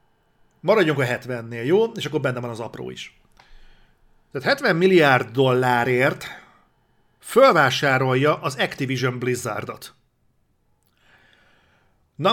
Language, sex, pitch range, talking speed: Hungarian, male, 125-150 Hz, 95 wpm